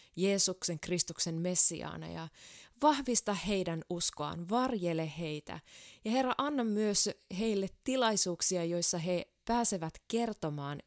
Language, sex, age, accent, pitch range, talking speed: Finnish, female, 20-39, native, 160-210 Hz, 105 wpm